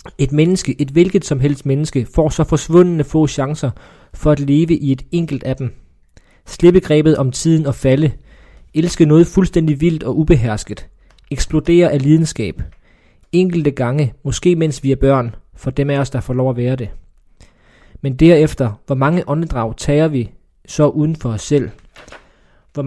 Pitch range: 125-155 Hz